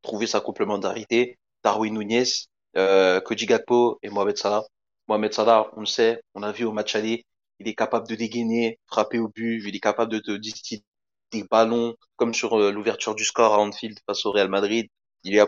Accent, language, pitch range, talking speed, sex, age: French, French, 105-115 Hz, 195 wpm, male, 30-49